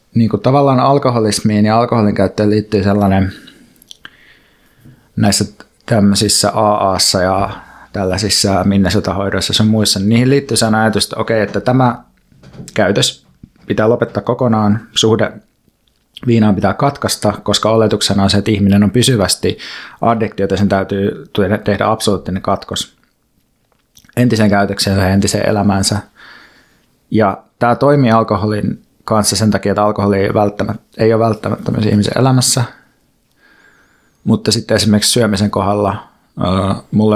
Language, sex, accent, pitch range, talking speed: Finnish, male, native, 100-115 Hz, 125 wpm